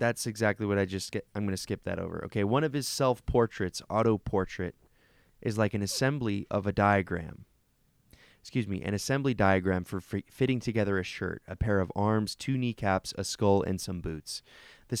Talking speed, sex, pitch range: 190 wpm, male, 95-110 Hz